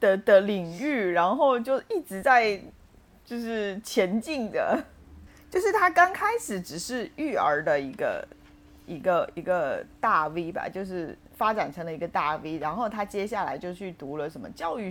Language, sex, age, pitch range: Chinese, female, 30-49, 190-315 Hz